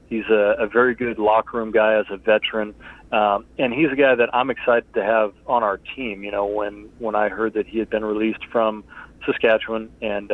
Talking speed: 220 wpm